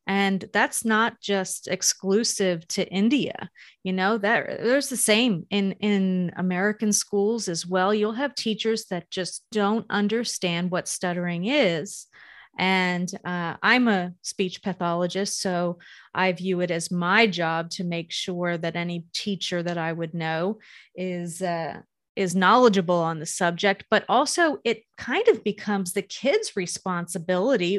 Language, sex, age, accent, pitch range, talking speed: English, female, 30-49, American, 175-210 Hz, 145 wpm